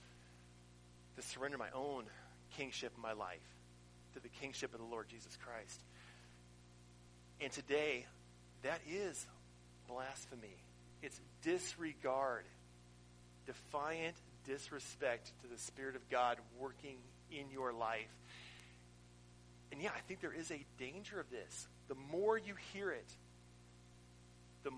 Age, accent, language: 40-59, American, English